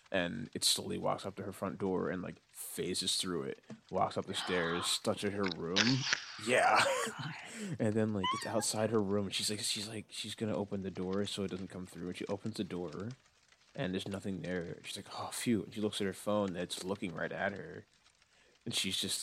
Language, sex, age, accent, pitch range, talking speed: English, male, 20-39, American, 90-110 Hz, 220 wpm